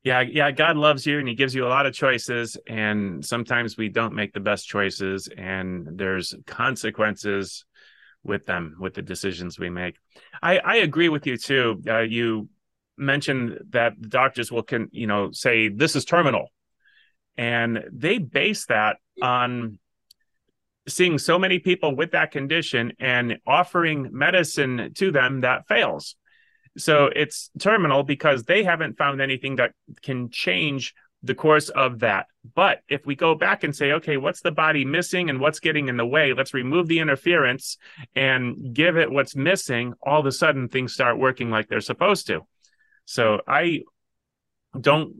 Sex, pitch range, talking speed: male, 115-145 Hz, 165 wpm